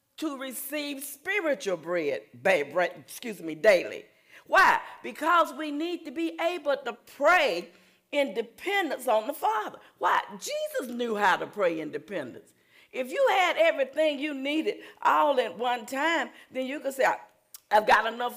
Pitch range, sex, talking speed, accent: 250-320 Hz, female, 150 wpm, American